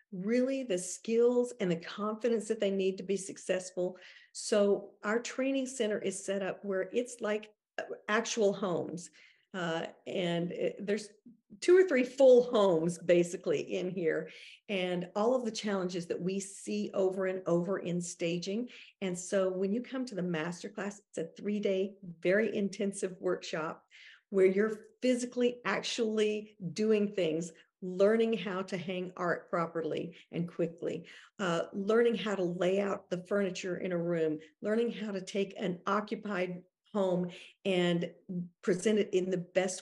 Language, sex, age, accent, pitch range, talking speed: English, female, 50-69, American, 180-225 Hz, 150 wpm